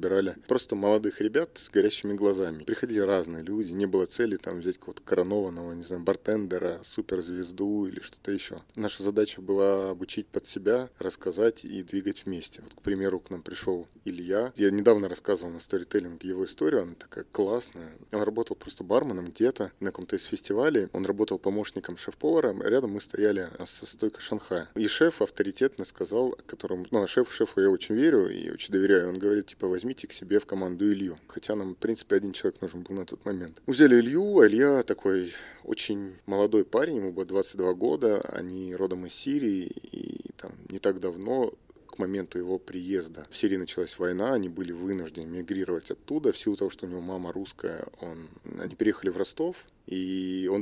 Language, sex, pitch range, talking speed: Russian, male, 90-105 Hz, 180 wpm